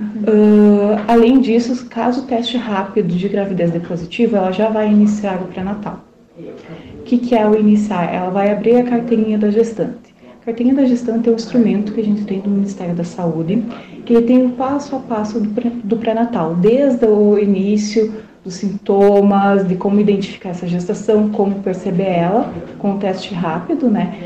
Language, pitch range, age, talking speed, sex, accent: Portuguese, 200-240 Hz, 30-49, 175 wpm, female, Brazilian